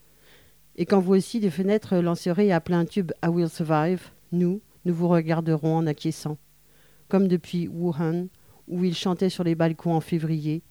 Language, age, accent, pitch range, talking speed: French, 50-69, French, 160-185 Hz, 180 wpm